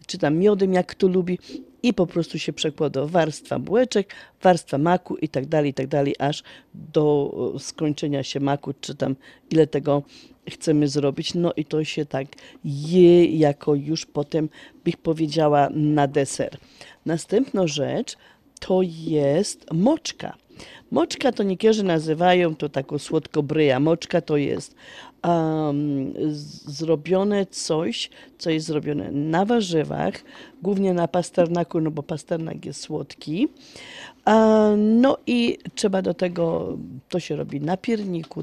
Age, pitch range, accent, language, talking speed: 40-59, 150-190 Hz, native, Polish, 135 wpm